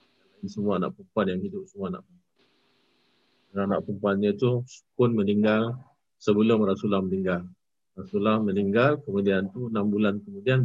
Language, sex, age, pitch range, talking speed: Malay, male, 50-69, 95-105 Hz, 130 wpm